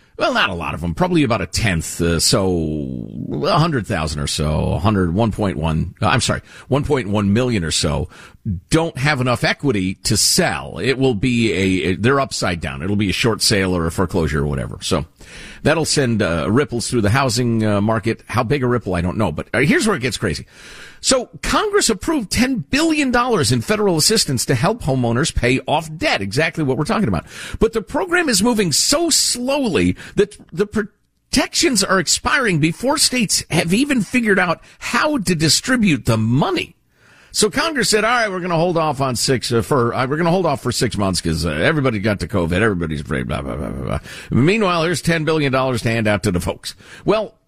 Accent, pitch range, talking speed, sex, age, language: American, 100-165 Hz, 205 wpm, male, 50-69, English